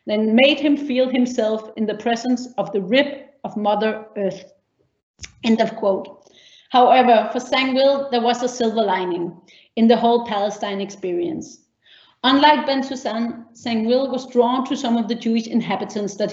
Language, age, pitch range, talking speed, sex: English, 40-59, 215-275 Hz, 160 wpm, female